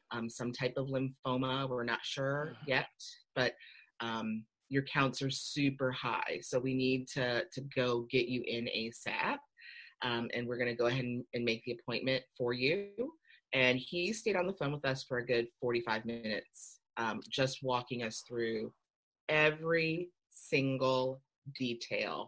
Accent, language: American, English